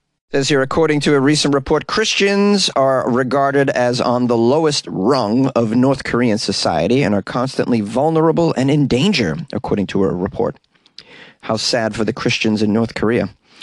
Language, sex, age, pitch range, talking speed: English, male, 30-49, 105-140 Hz, 160 wpm